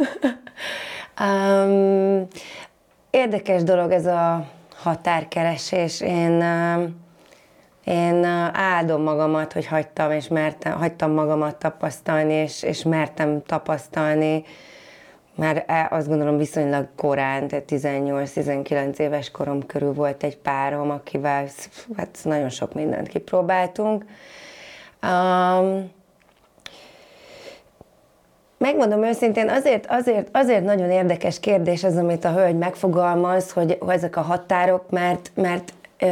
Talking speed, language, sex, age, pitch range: 105 wpm, Hungarian, female, 30-49, 155-190 Hz